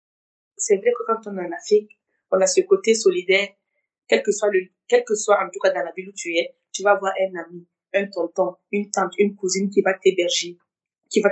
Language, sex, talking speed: French, female, 240 wpm